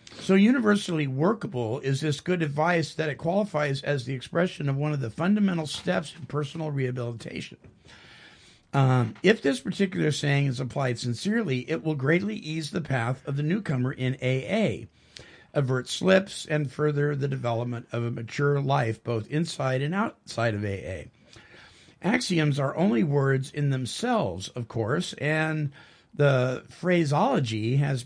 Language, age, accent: English, 50-69, American